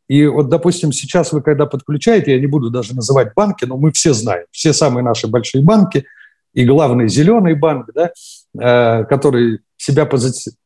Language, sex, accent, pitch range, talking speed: Russian, male, native, 130-165 Hz, 170 wpm